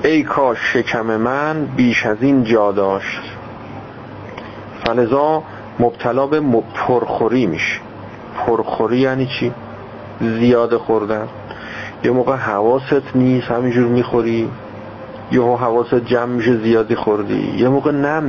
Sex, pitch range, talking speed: male, 110-130 Hz, 110 wpm